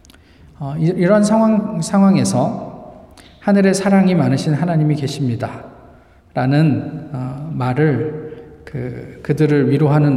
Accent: native